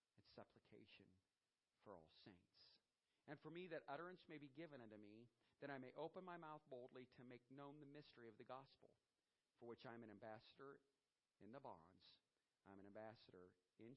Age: 50-69